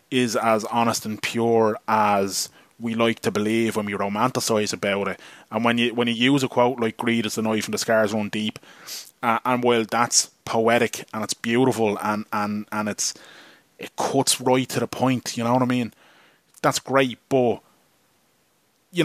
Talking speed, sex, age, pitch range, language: 190 wpm, male, 20-39, 110-125 Hz, English